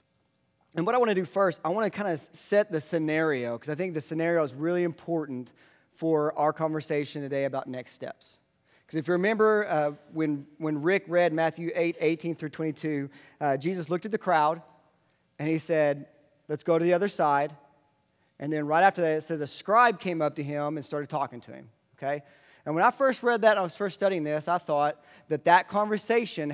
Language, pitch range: English, 145-175 Hz